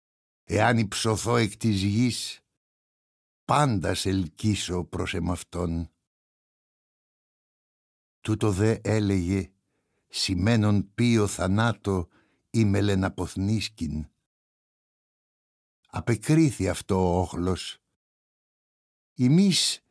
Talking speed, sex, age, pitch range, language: 65 wpm, male, 60-79, 95-120 Hz, Greek